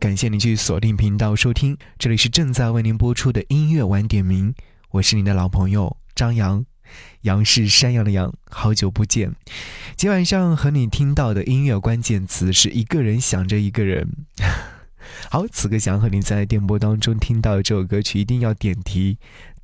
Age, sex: 20-39, male